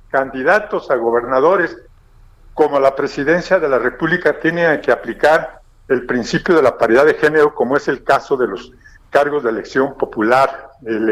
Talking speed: 160 wpm